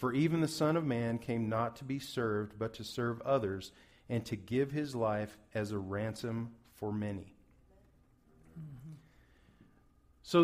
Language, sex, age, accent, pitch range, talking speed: English, male, 40-59, American, 110-160 Hz, 150 wpm